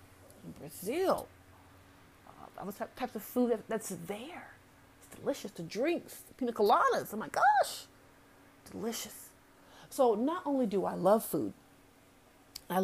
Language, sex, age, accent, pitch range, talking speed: English, female, 40-59, American, 180-230 Hz, 140 wpm